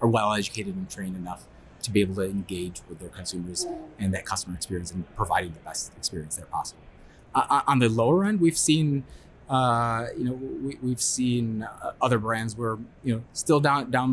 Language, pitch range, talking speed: English, 105-130 Hz, 190 wpm